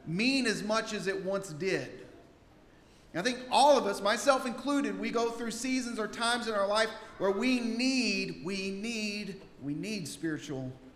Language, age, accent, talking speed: English, 40-59, American, 170 wpm